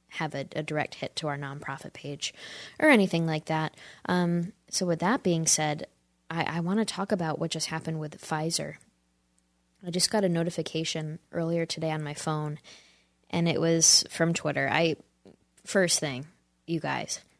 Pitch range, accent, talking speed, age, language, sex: 155-180 Hz, American, 170 wpm, 10-29, English, female